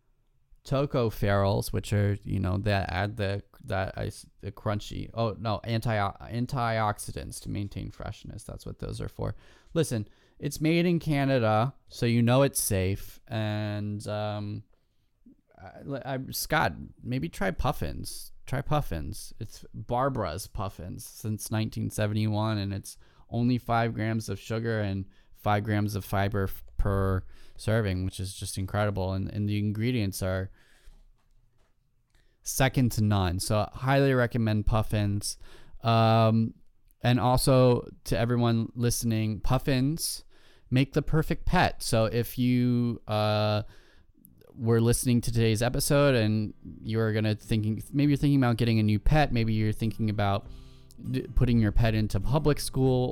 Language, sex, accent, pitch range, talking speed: English, male, American, 105-120 Hz, 140 wpm